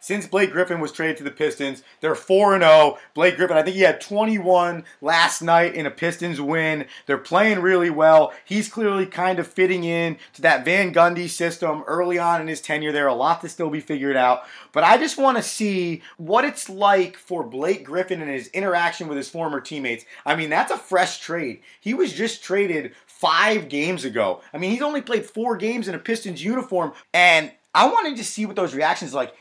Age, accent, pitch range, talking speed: 30-49, American, 155-210 Hz, 210 wpm